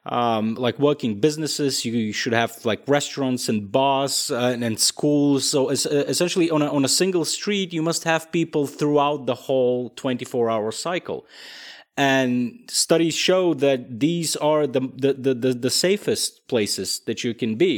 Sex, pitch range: male, 125-165 Hz